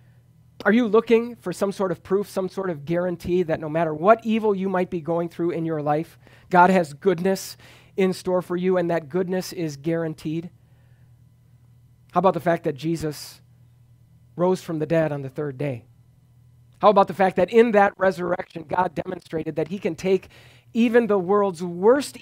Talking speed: 185 wpm